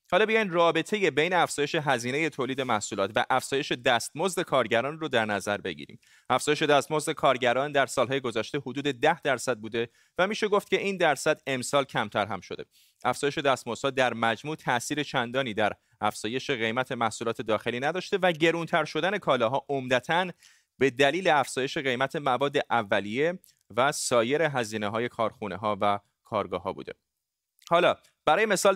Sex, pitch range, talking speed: male, 120-155 Hz, 145 wpm